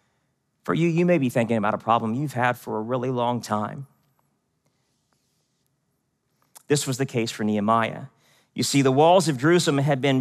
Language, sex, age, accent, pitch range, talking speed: English, male, 40-59, American, 120-170 Hz, 175 wpm